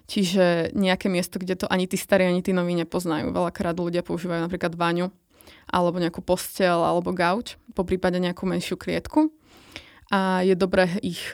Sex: female